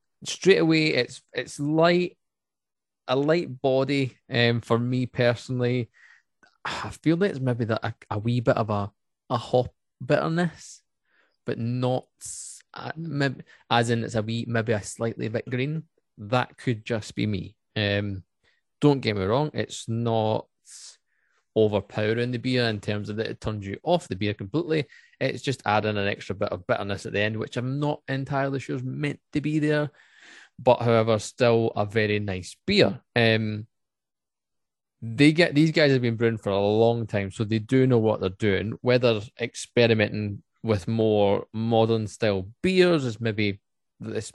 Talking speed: 165 wpm